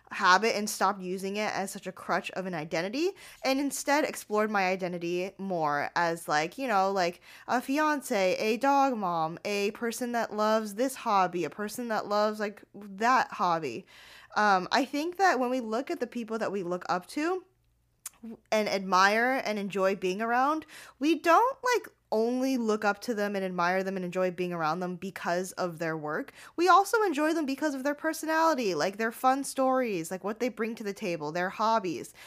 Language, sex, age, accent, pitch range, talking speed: English, female, 10-29, American, 190-255 Hz, 190 wpm